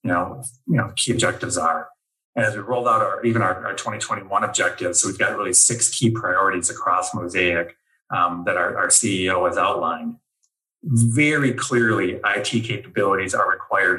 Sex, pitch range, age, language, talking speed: male, 100-125 Hz, 30-49, English, 175 wpm